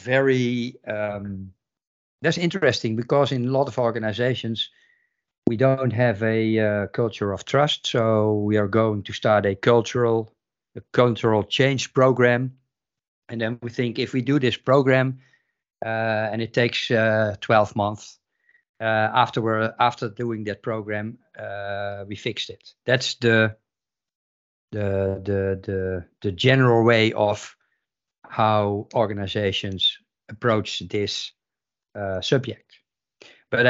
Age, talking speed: 50-69, 130 wpm